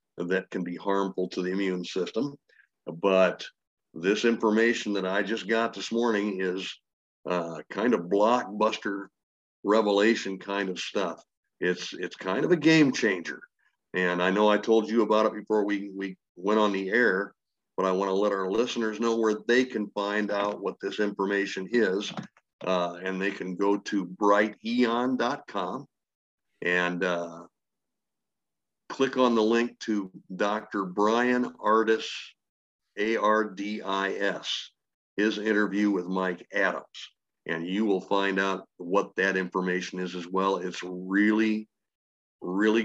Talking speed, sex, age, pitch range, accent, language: 145 wpm, male, 50-69, 95-110 Hz, American, English